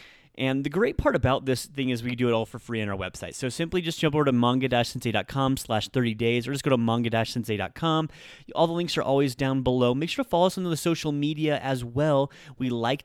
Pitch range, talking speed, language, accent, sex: 120-150 Hz, 240 wpm, English, American, male